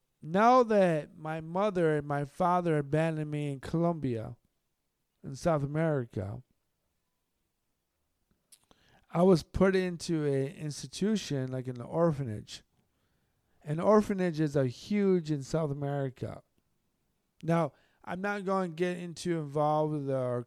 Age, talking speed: 50-69, 115 wpm